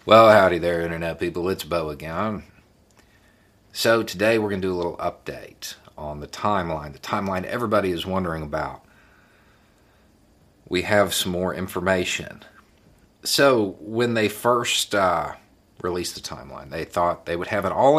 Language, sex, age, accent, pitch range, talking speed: English, male, 40-59, American, 80-105 Hz, 155 wpm